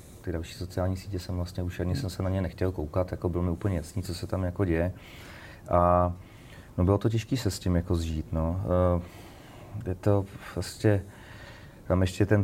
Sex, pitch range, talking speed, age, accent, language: male, 90-105 Hz, 195 wpm, 30-49, native, Czech